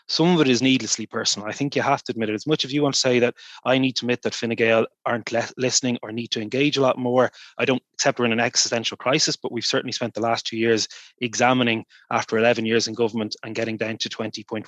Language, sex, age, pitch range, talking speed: English, male, 20-39, 110-130 Hz, 270 wpm